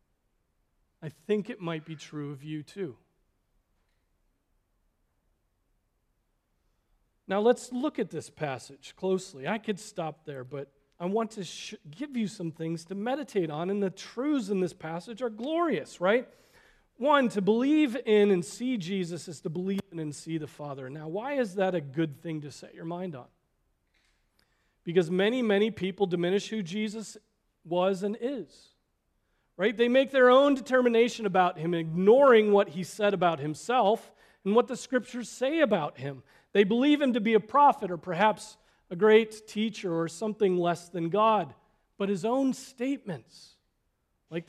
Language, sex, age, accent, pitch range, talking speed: English, male, 40-59, American, 165-235 Hz, 160 wpm